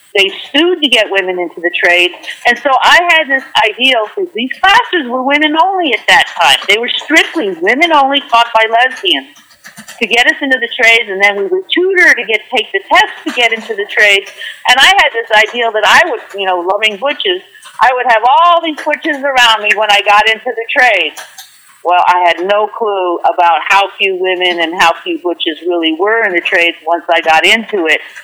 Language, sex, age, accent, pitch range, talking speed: English, female, 50-69, American, 205-300 Hz, 215 wpm